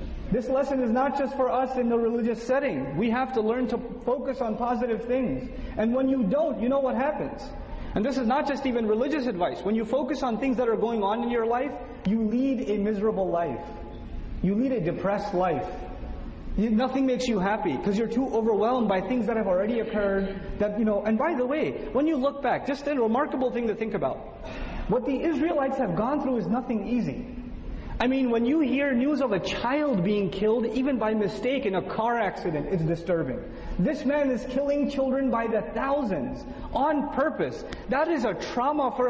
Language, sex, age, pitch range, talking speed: English, male, 30-49, 220-270 Hz, 205 wpm